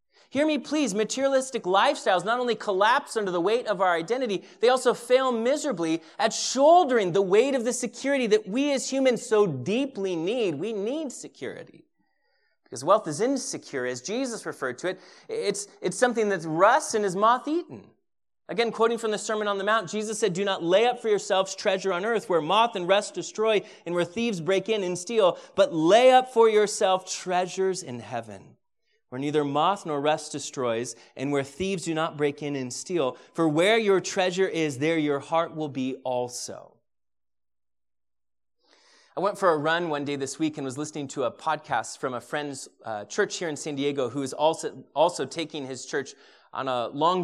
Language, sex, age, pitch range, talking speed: English, male, 30-49, 145-225 Hz, 195 wpm